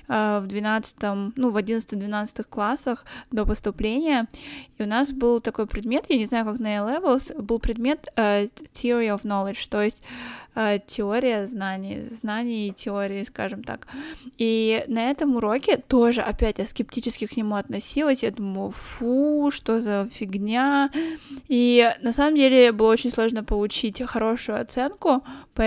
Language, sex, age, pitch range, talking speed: Russian, female, 20-39, 210-245 Hz, 150 wpm